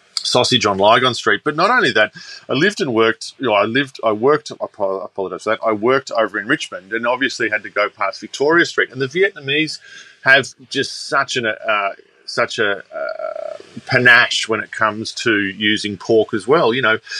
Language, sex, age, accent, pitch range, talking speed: English, male, 30-49, Australian, 105-135 Hz, 195 wpm